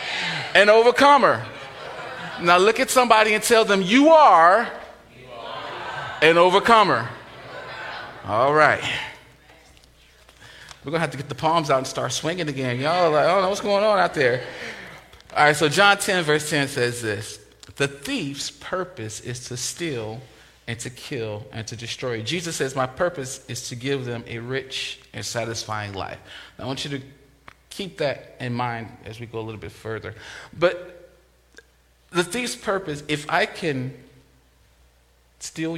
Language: English